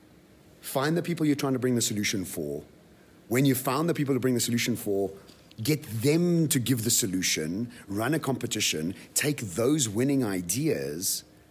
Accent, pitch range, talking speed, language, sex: British, 105-140 Hz, 170 wpm, English, male